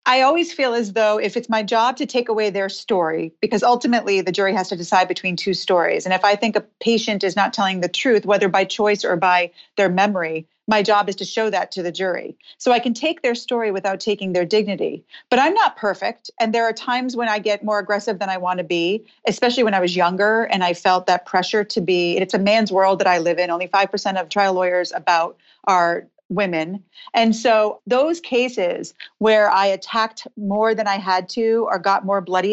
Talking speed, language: 225 wpm, English